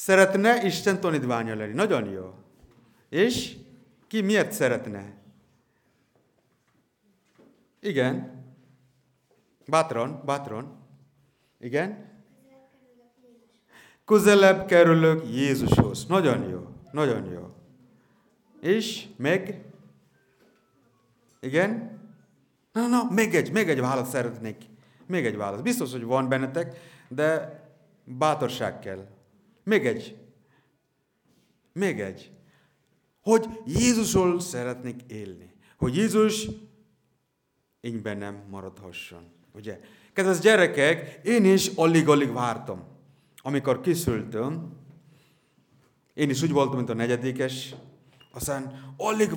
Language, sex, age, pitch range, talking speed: Hungarian, male, 50-69, 110-185 Hz, 90 wpm